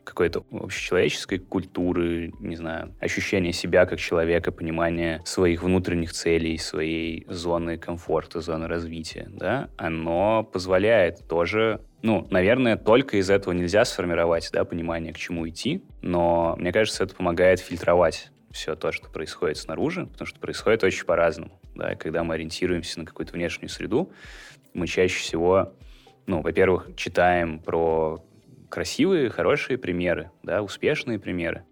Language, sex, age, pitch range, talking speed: Russian, male, 20-39, 80-90 Hz, 135 wpm